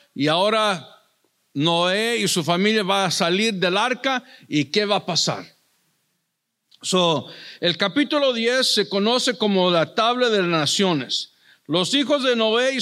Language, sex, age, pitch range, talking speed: English, male, 50-69, 170-235 Hz, 155 wpm